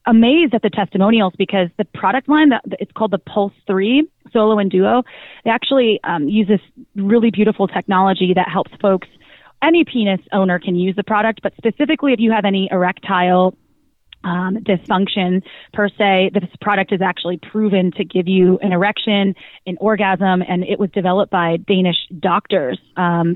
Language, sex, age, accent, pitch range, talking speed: English, female, 30-49, American, 180-215 Hz, 170 wpm